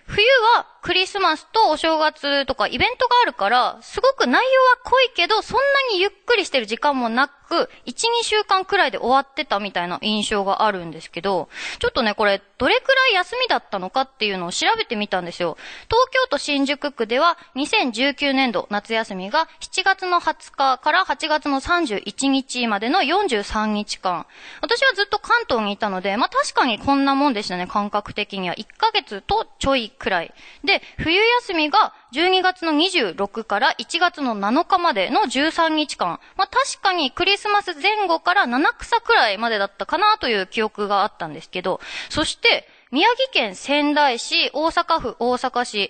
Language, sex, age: Japanese, female, 20-39